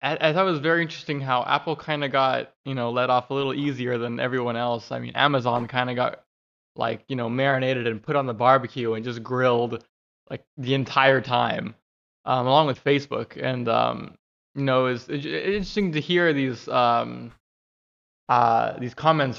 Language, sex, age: English, male, 20-39